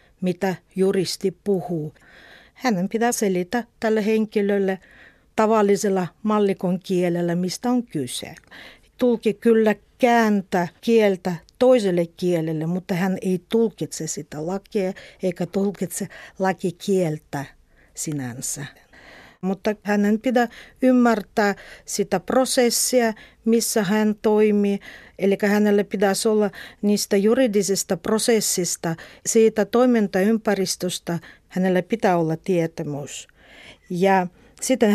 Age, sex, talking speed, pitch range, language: 50-69, female, 95 wpm, 180-220 Hz, Finnish